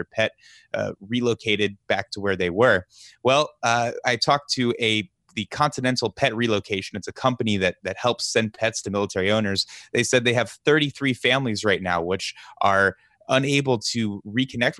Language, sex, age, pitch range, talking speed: English, male, 20-39, 100-130 Hz, 170 wpm